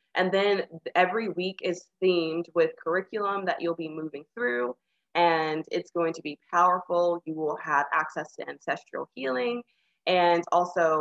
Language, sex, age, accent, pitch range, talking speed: English, female, 20-39, American, 165-200 Hz, 155 wpm